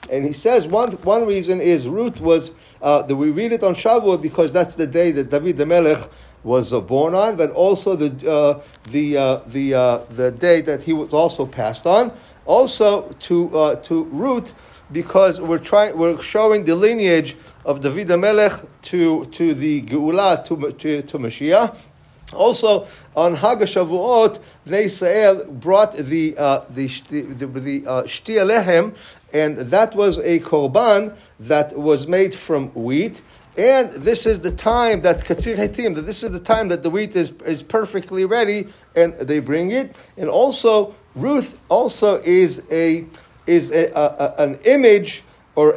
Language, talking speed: English, 160 wpm